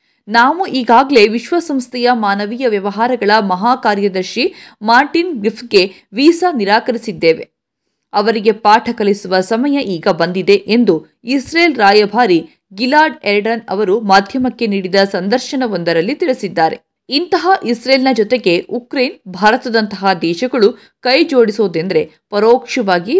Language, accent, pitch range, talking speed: Kannada, native, 205-270 Hz, 95 wpm